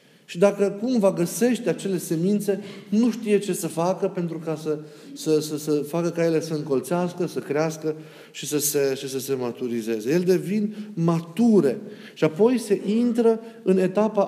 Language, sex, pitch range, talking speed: Romanian, male, 145-180 Hz, 160 wpm